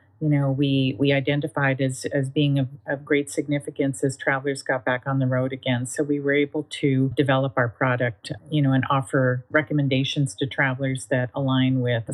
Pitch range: 135-160 Hz